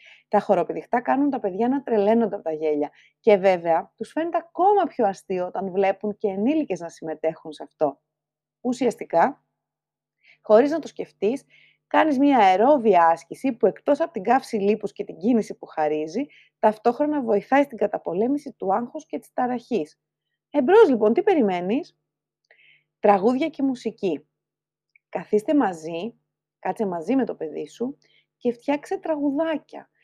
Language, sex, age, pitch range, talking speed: Greek, female, 30-49, 190-285 Hz, 145 wpm